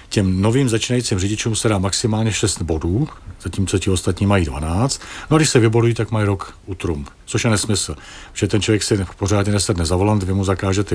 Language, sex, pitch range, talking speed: Czech, male, 90-115 Hz, 205 wpm